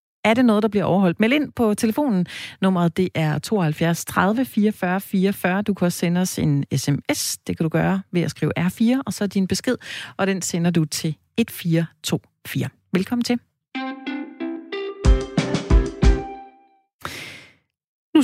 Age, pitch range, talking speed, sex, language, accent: 40-59, 160-210 Hz, 150 wpm, female, Danish, native